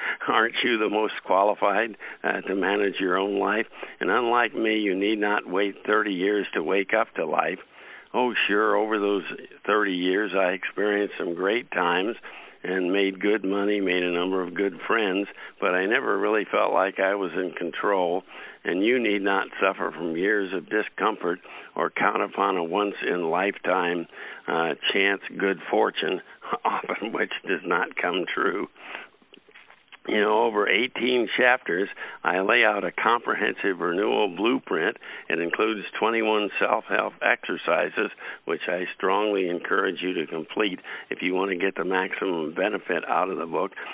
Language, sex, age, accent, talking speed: English, male, 60-79, American, 155 wpm